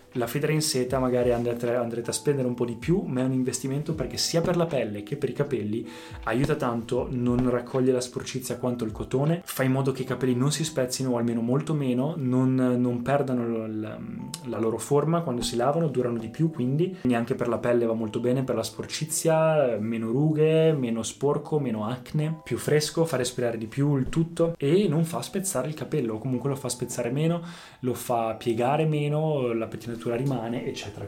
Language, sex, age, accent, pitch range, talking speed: Italian, male, 20-39, native, 120-145 Hz, 205 wpm